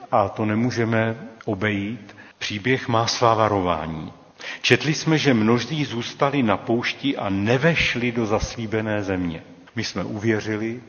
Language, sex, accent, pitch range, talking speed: Czech, male, native, 105-120 Hz, 125 wpm